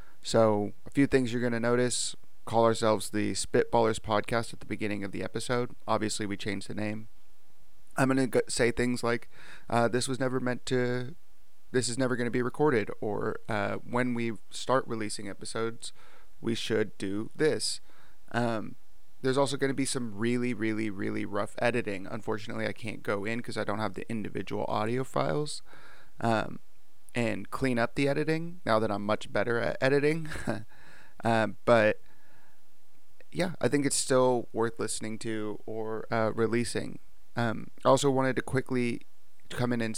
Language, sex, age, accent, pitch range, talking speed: English, male, 30-49, American, 110-125 Hz, 170 wpm